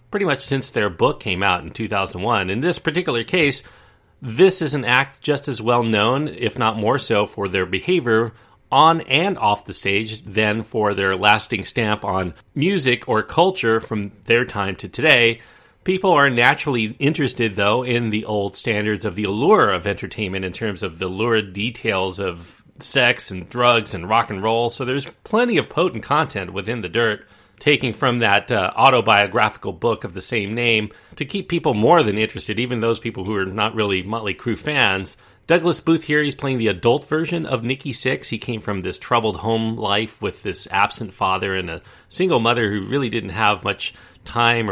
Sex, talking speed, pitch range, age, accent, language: male, 190 wpm, 100-125 Hz, 40-59, American, English